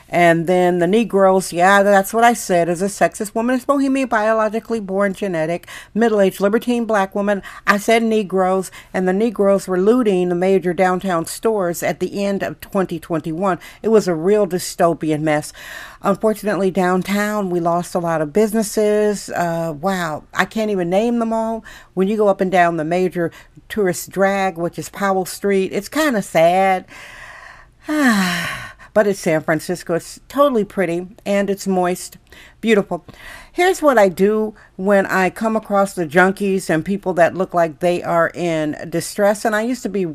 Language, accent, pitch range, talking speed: English, American, 170-210 Hz, 170 wpm